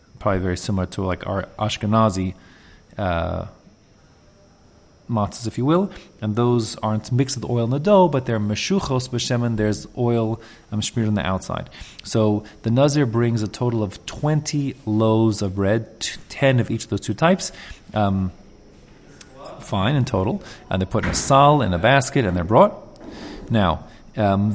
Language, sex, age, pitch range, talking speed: English, male, 30-49, 105-130 Hz, 165 wpm